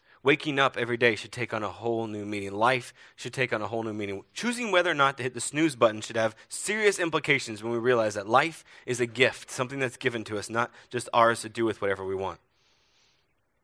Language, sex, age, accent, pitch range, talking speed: English, male, 20-39, American, 110-130 Hz, 240 wpm